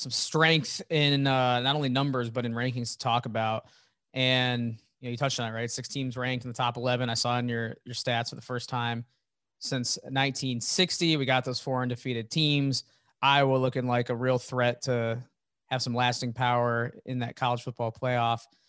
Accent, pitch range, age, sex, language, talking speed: American, 120-135 Hz, 20-39, male, English, 200 wpm